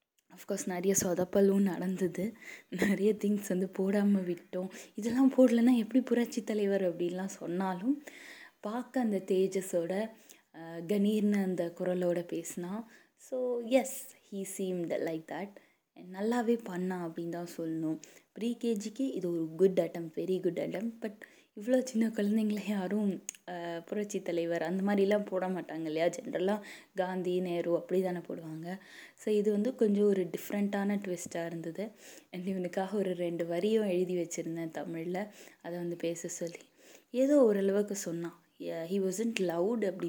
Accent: native